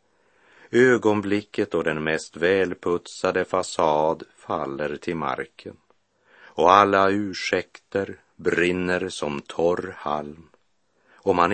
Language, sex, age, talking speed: Swedish, male, 60-79, 95 wpm